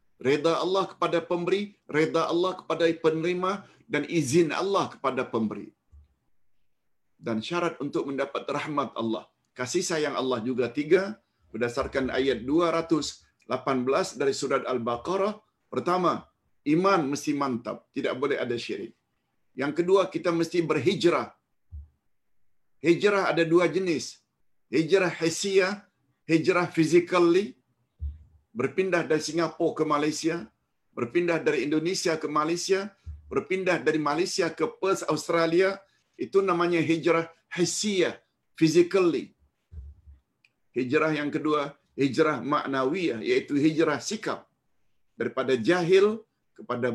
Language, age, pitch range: Malayalam, 50-69, 135-185 Hz